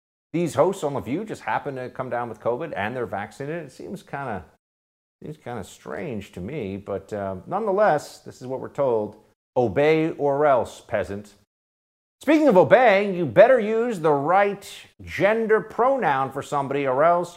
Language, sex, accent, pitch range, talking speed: English, male, American, 110-155 Hz, 170 wpm